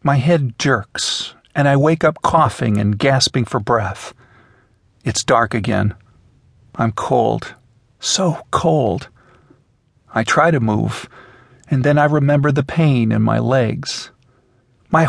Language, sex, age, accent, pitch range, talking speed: English, male, 50-69, American, 115-145 Hz, 130 wpm